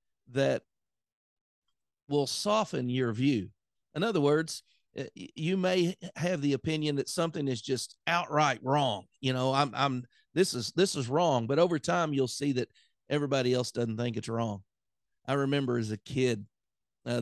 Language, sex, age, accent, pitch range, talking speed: English, male, 40-59, American, 120-145 Hz, 160 wpm